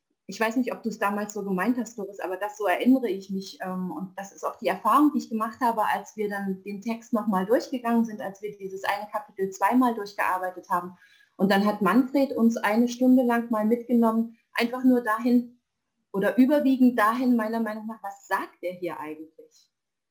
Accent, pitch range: German, 205-255 Hz